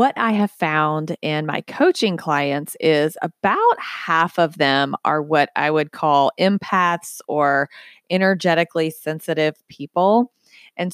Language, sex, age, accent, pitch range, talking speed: English, female, 30-49, American, 160-205 Hz, 130 wpm